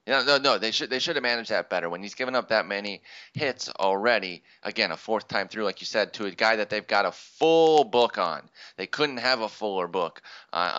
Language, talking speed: English, 250 wpm